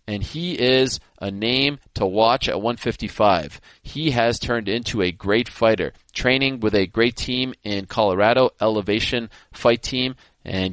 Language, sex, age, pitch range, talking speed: English, male, 20-39, 100-120 Hz, 150 wpm